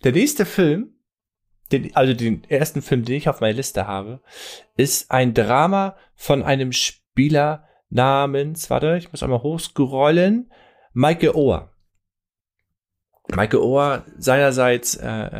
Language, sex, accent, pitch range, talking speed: German, male, German, 110-145 Hz, 125 wpm